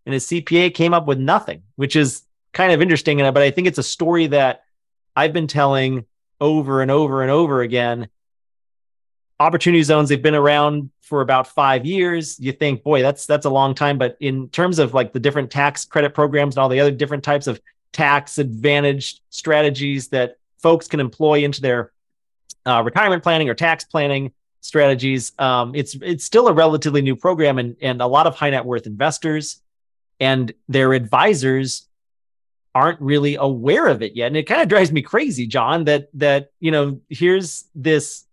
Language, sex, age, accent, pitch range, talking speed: English, male, 30-49, American, 130-155 Hz, 185 wpm